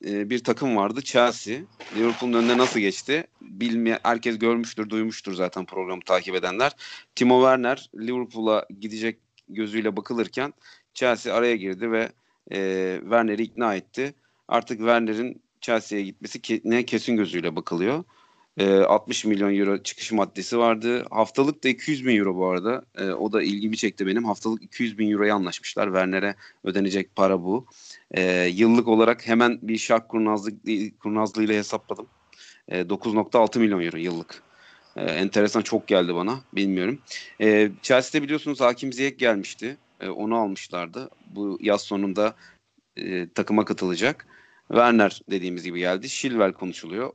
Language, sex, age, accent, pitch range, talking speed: Turkish, male, 40-59, native, 100-120 Hz, 140 wpm